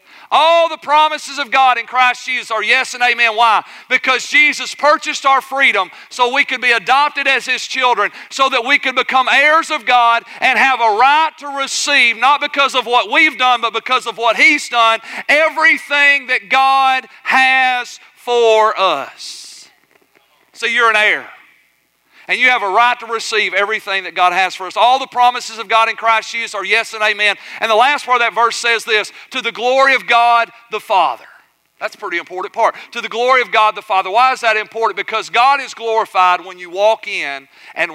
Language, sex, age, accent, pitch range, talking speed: English, male, 40-59, American, 185-250 Hz, 200 wpm